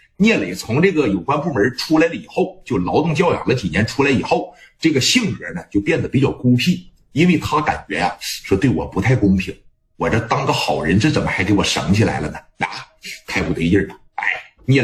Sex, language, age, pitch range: male, Chinese, 50-69, 100-135 Hz